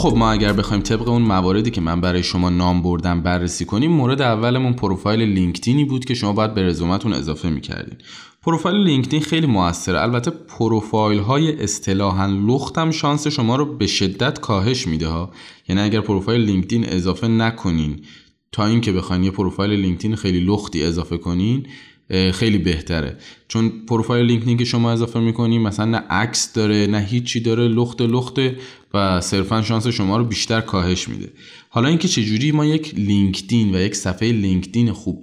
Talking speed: 160 wpm